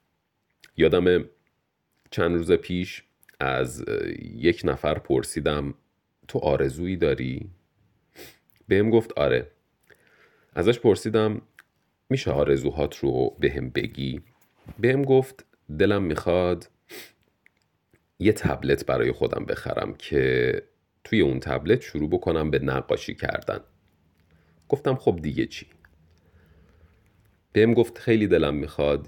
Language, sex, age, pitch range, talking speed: Persian, male, 40-59, 75-105 Hz, 100 wpm